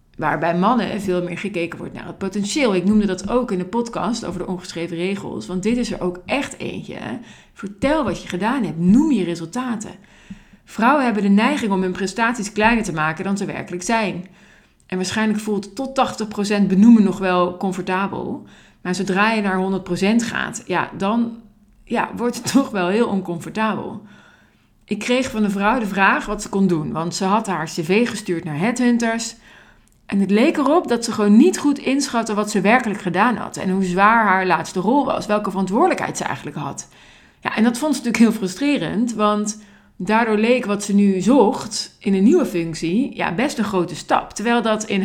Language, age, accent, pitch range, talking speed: Dutch, 50-69, Dutch, 185-230 Hz, 195 wpm